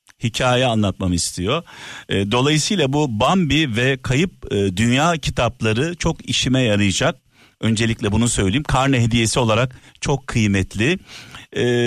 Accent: native